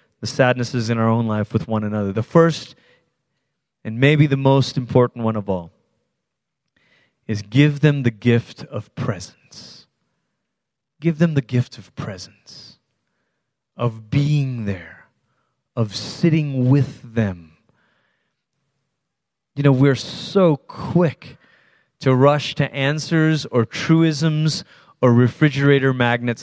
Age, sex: 30-49, male